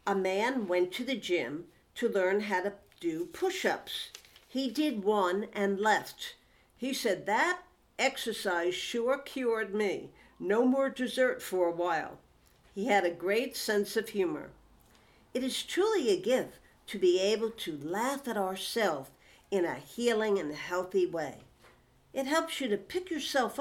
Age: 60-79